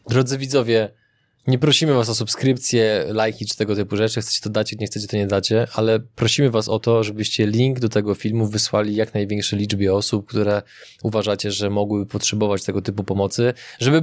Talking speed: 190 wpm